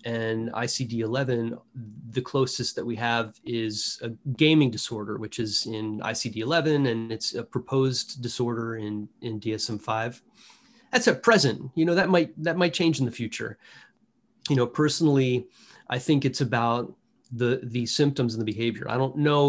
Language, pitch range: English, 115-145 Hz